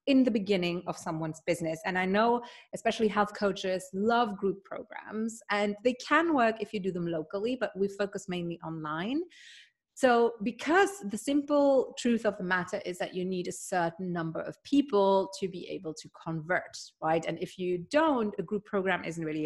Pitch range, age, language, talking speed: 175-225 Hz, 30-49, English, 190 wpm